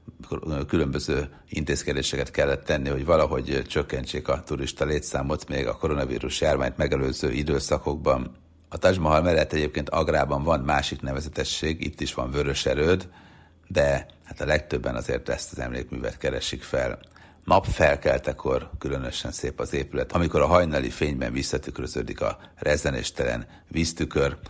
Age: 60-79